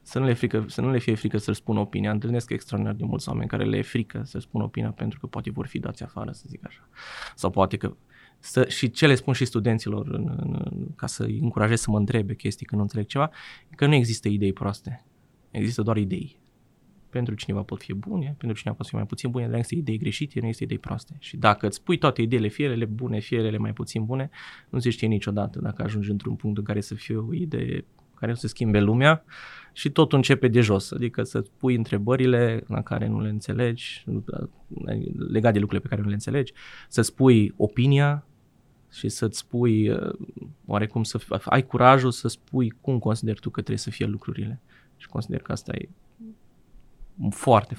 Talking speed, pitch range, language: 205 wpm, 105-130 Hz, Romanian